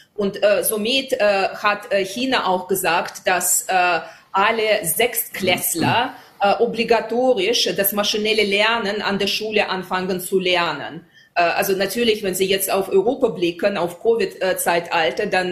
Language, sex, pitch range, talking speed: German, female, 185-220 Hz, 135 wpm